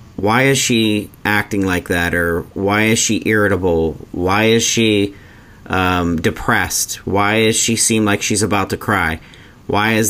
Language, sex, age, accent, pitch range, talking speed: English, male, 40-59, American, 95-115 Hz, 160 wpm